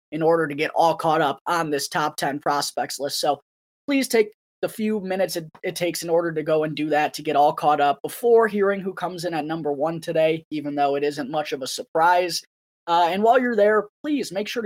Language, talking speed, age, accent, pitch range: English, 240 wpm, 20-39, American, 155-205 Hz